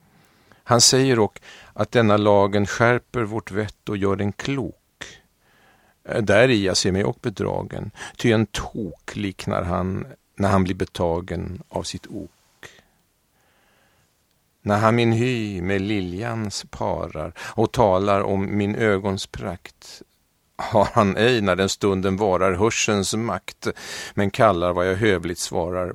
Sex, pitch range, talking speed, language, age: male, 95-110 Hz, 140 wpm, Swedish, 50-69